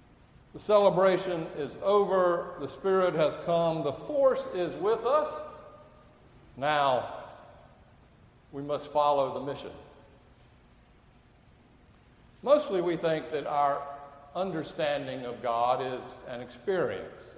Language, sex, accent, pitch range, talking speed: English, male, American, 145-195 Hz, 105 wpm